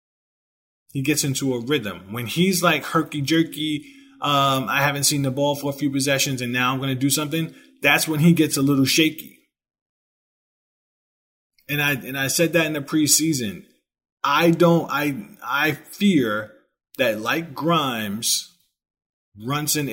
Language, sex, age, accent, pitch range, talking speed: English, male, 20-39, American, 115-150 Hz, 155 wpm